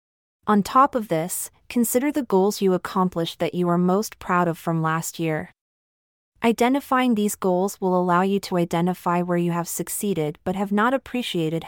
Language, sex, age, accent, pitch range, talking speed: English, female, 30-49, American, 170-210 Hz, 175 wpm